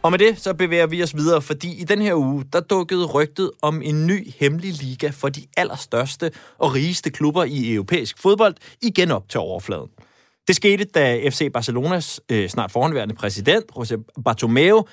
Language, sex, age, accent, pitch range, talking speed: Danish, male, 20-39, native, 130-180 Hz, 180 wpm